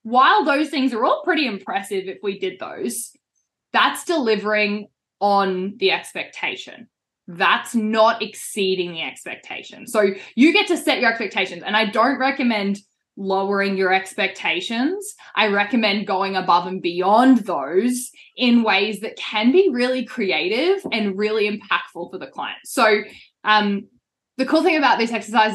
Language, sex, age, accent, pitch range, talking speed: English, female, 10-29, Australian, 200-255 Hz, 150 wpm